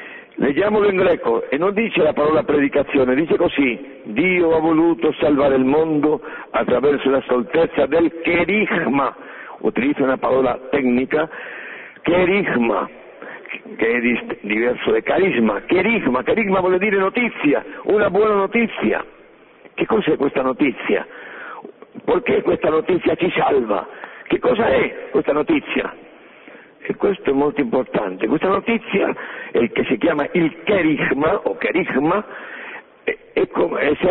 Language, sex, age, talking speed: Italian, male, 60-79, 125 wpm